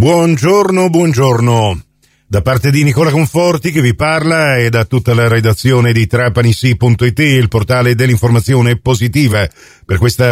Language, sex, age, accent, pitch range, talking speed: Italian, male, 50-69, native, 110-130 Hz, 135 wpm